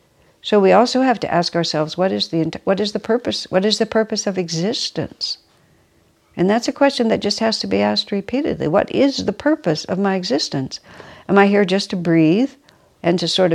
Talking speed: 210 wpm